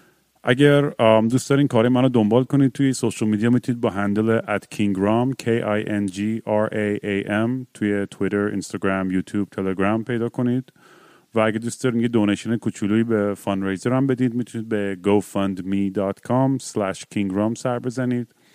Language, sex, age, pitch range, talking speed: Persian, male, 30-49, 100-120 Hz, 135 wpm